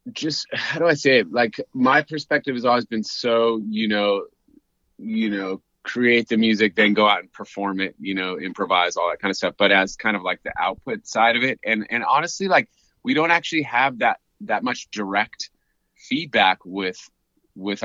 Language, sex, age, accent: English, male, 30-49, American